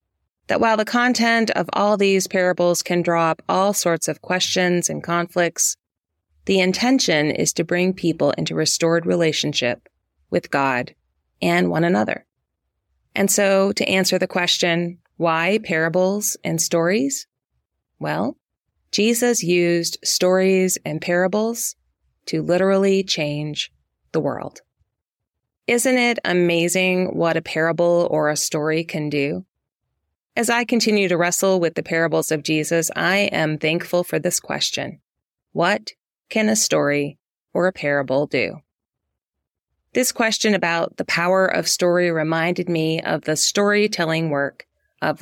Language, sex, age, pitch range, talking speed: English, female, 30-49, 155-190 Hz, 135 wpm